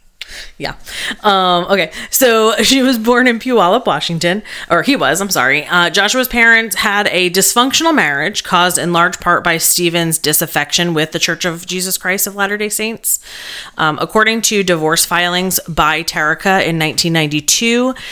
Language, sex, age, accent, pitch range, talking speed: English, female, 30-49, American, 150-195 Hz, 155 wpm